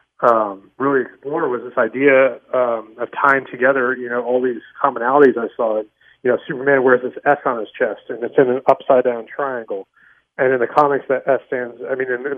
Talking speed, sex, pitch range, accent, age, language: 205 wpm, male, 120-135 Hz, American, 30-49, English